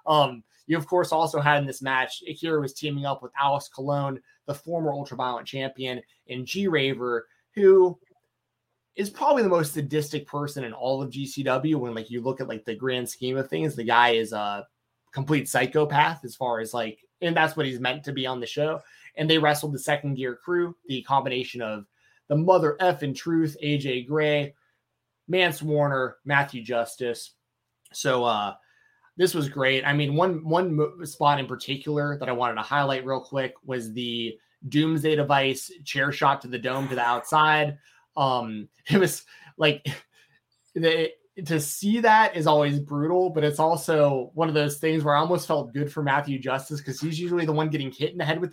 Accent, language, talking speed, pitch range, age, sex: American, English, 190 wpm, 130-160 Hz, 20-39, male